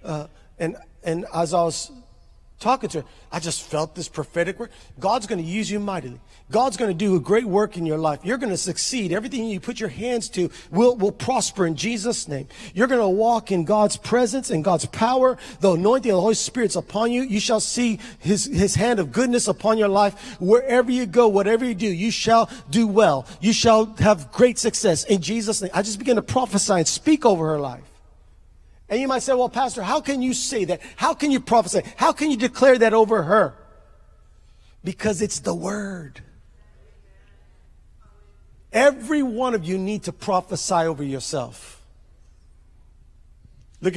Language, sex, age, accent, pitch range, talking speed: English, male, 40-59, American, 175-235 Hz, 190 wpm